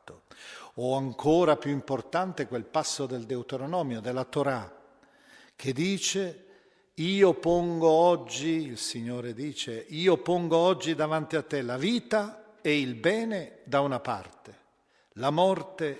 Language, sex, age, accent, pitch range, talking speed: Italian, male, 50-69, native, 130-170 Hz, 130 wpm